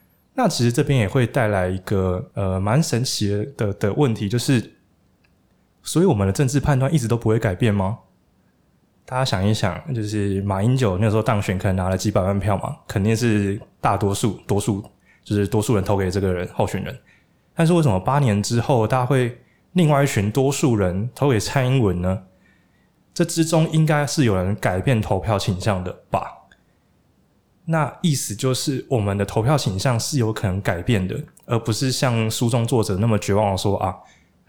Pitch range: 100-125 Hz